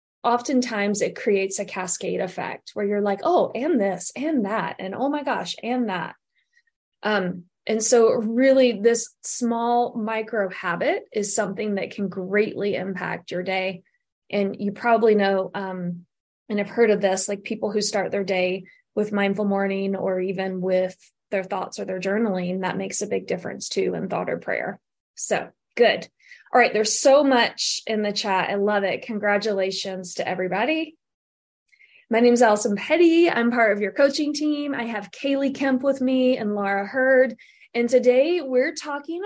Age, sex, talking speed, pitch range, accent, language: 20-39, female, 175 wpm, 195-255 Hz, American, English